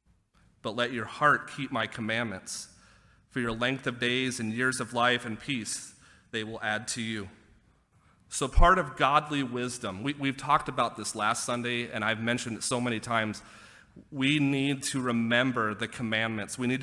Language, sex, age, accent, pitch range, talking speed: English, male, 30-49, American, 105-125 Hz, 180 wpm